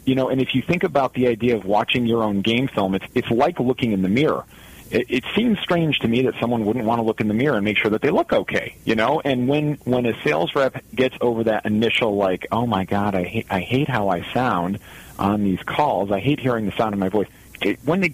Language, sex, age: English, male, 40-59